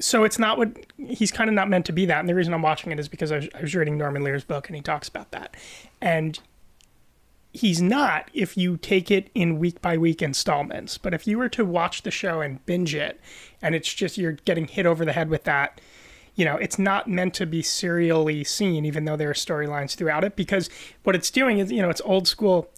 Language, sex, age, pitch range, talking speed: English, male, 30-49, 155-190 Hz, 240 wpm